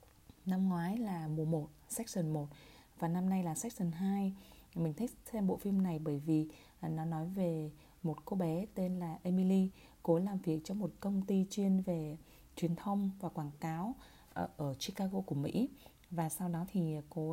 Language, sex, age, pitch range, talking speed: Vietnamese, female, 20-39, 160-200 Hz, 190 wpm